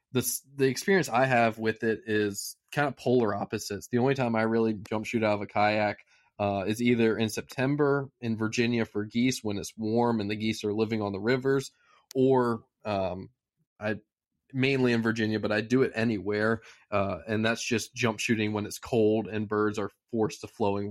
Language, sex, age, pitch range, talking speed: English, male, 20-39, 105-120 Hz, 200 wpm